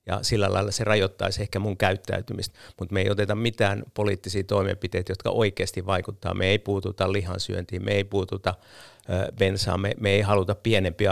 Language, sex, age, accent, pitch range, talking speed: Finnish, male, 50-69, native, 95-110 Hz, 165 wpm